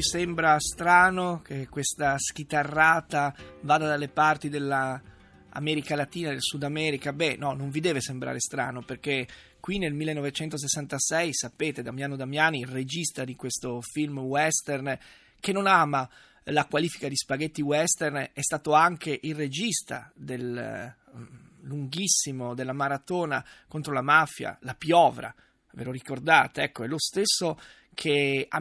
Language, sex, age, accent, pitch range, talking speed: Italian, male, 20-39, native, 140-180 Hz, 135 wpm